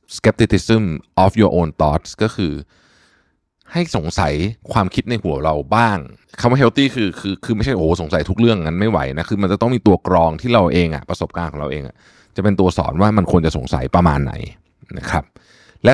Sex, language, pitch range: male, Thai, 85-110 Hz